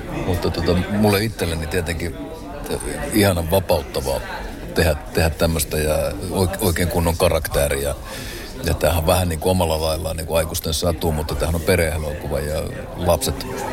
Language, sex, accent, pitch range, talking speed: Finnish, male, native, 80-90 Hz, 135 wpm